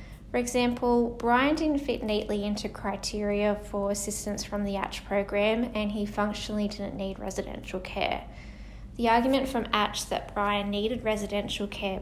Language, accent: English, Australian